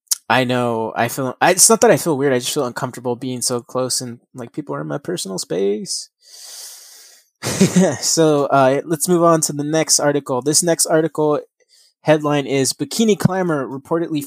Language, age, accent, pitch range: English, 20-39, American, 130-165 Hz